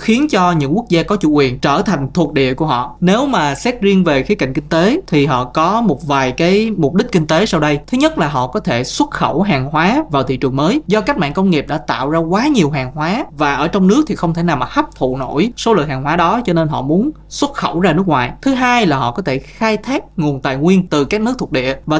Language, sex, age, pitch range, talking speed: Vietnamese, male, 20-39, 145-200 Hz, 285 wpm